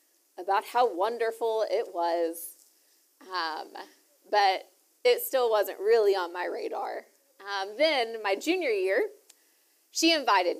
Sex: female